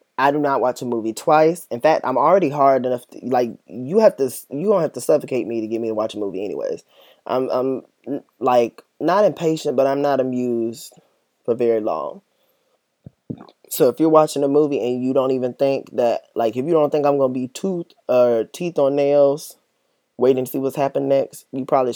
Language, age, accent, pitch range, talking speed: English, 20-39, American, 115-145 Hz, 215 wpm